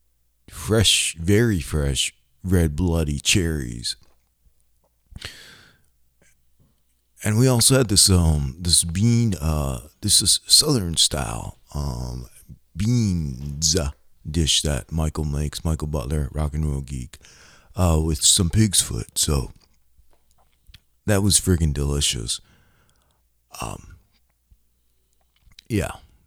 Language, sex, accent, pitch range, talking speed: English, male, American, 65-90 Hz, 100 wpm